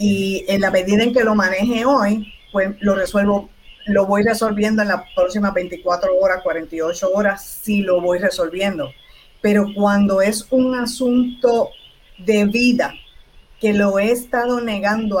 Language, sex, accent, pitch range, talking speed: Spanish, female, American, 195-240 Hz, 155 wpm